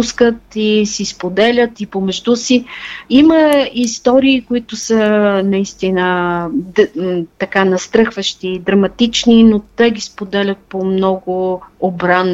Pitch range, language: 195-240 Hz, Bulgarian